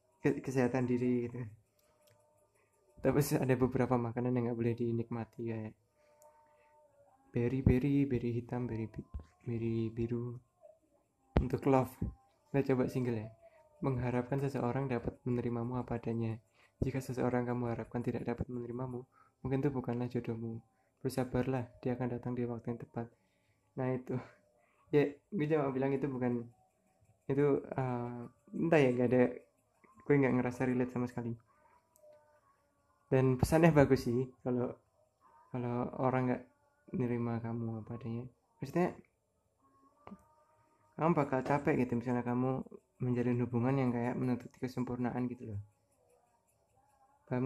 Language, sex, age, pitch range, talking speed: Indonesian, male, 20-39, 120-135 Hz, 115 wpm